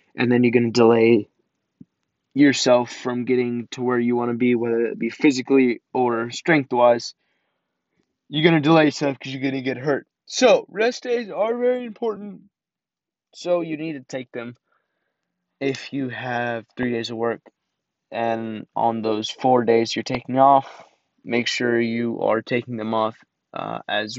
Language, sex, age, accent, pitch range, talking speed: English, male, 20-39, American, 115-135 Hz, 170 wpm